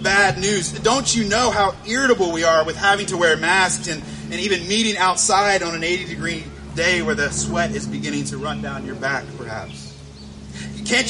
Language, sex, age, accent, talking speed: English, male, 30-49, American, 195 wpm